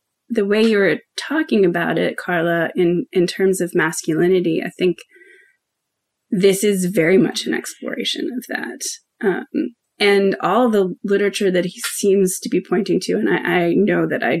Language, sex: English, female